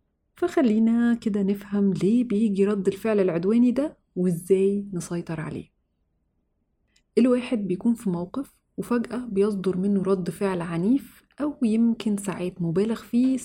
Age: 30-49